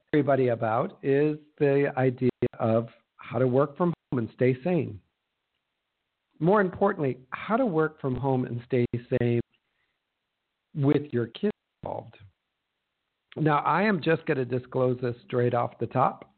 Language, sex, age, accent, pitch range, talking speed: English, male, 50-69, American, 125-150 Hz, 145 wpm